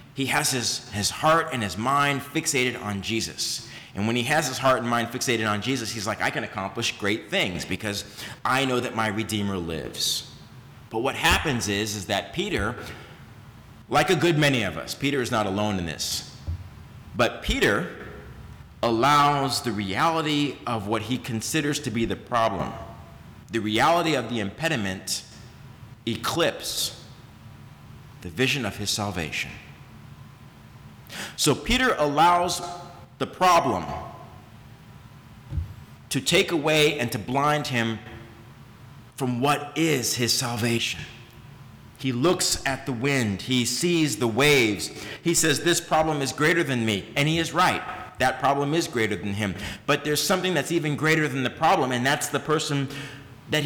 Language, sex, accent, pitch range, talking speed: English, male, American, 110-150 Hz, 155 wpm